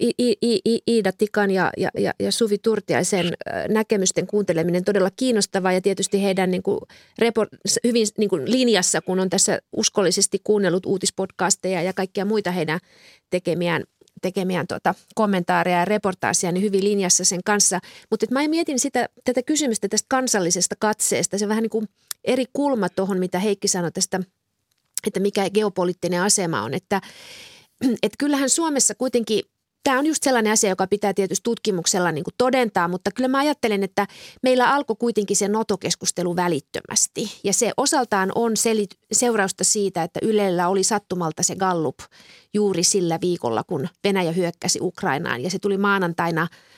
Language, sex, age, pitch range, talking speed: Finnish, female, 30-49, 180-220 Hz, 155 wpm